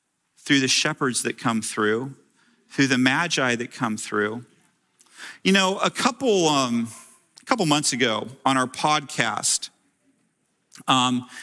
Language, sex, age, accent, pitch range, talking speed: English, male, 40-59, American, 125-155 Hz, 130 wpm